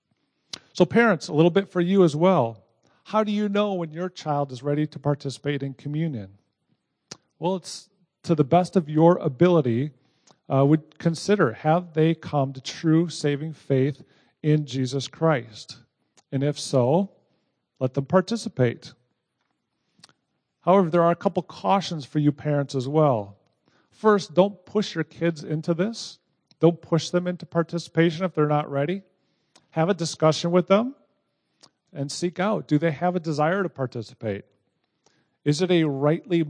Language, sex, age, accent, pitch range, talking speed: English, male, 40-59, American, 140-175 Hz, 155 wpm